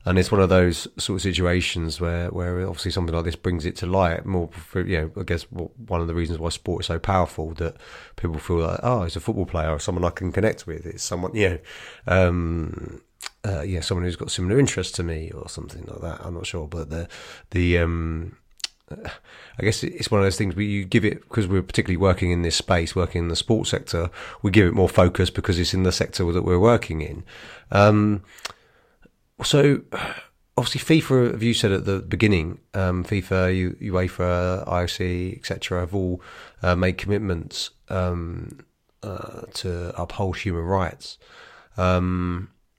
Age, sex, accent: 30-49, male, British